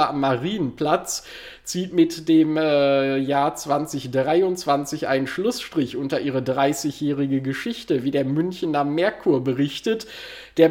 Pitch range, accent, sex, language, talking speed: 140-170 Hz, German, male, German, 110 wpm